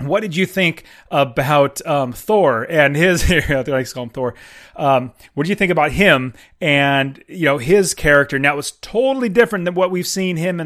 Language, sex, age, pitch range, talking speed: English, male, 30-49, 140-195 Hz, 210 wpm